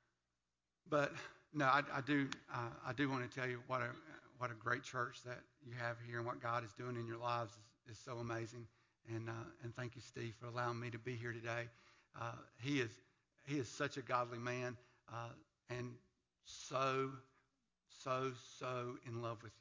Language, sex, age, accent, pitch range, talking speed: English, male, 60-79, American, 115-135 Hz, 195 wpm